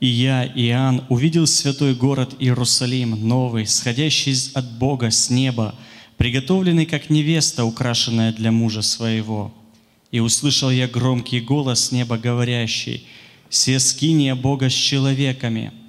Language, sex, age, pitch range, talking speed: Russian, male, 30-49, 115-135 Hz, 125 wpm